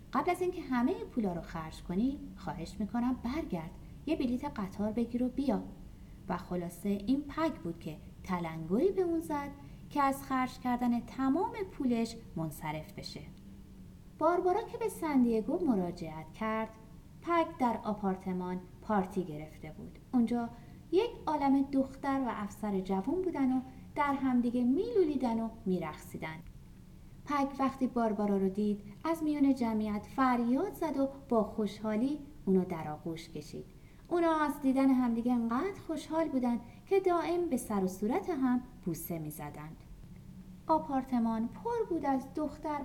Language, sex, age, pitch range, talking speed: Persian, female, 30-49, 190-290 Hz, 140 wpm